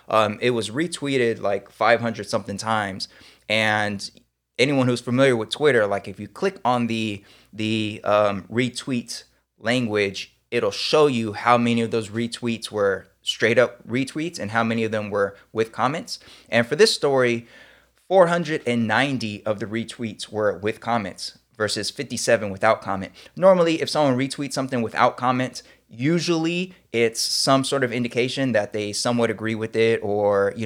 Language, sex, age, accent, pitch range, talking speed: English, male, 20-39, American, 105-125 Hz, 155 wpm